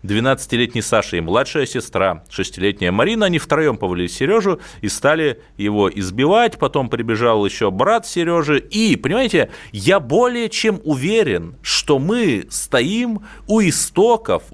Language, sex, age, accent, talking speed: Russian, male, 30-49, native, 130 wpm